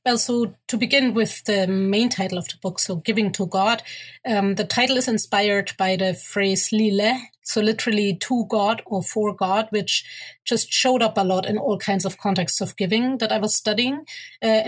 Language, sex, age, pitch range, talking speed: English, female, 30-49, 190-225 Hz, 200 wpm